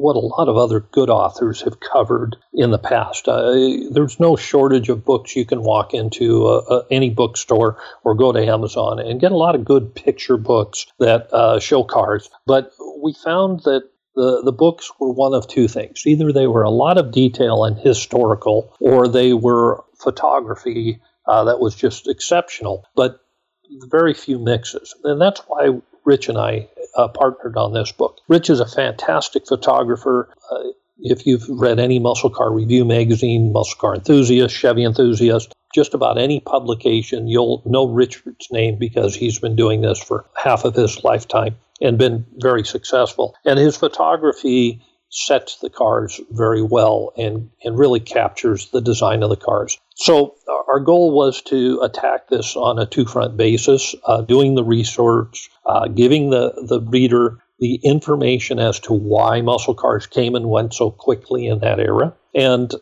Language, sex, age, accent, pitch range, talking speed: English, male, 40-59, American, 115-135 Hz, 175 wpm